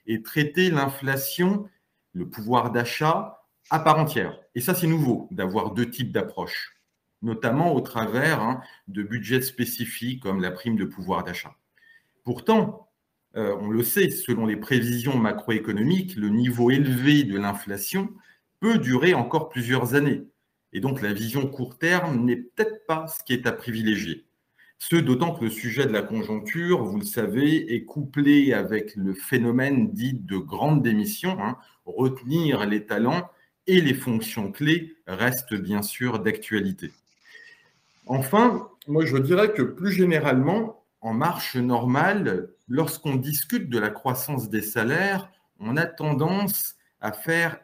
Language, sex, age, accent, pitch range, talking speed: French, male, 40-59, French, 120-170 Hz, 145 wpm